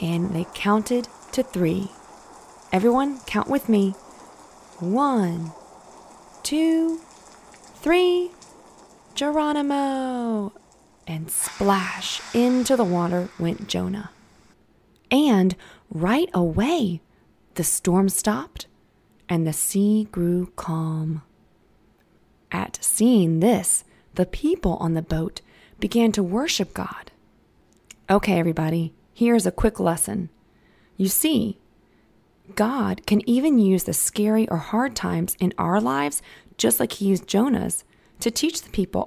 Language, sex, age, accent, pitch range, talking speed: English, female, 20-39, American, 170-235 Hz, 110 wpm